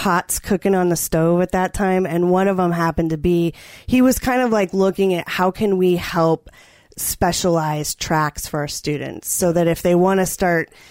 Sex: female